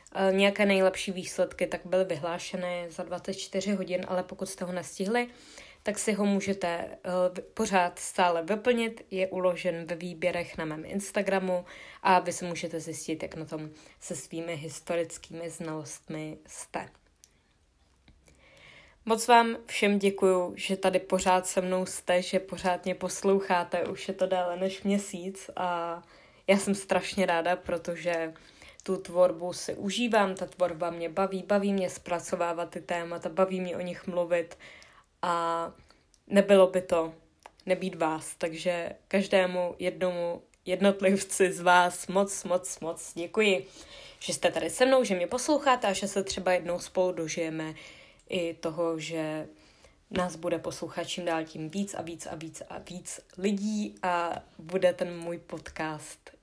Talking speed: 145 wpm